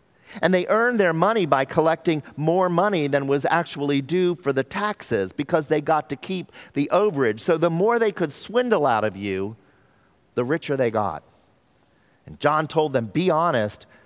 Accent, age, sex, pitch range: American, 50-69, male, 110-155 Hz